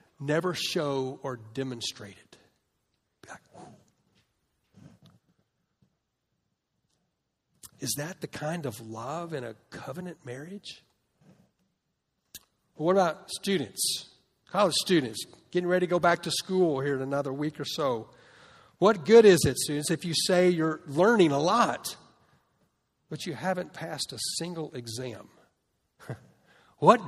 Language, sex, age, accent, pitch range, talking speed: English, male, 50-69, American, 130-175 Hz, 115 wpm